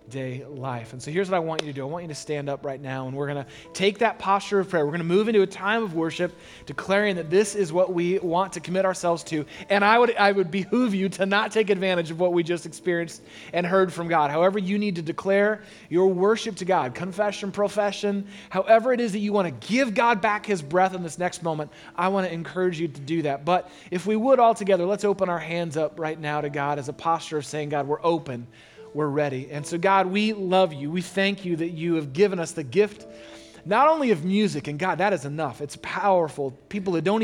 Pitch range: 150-200 Hz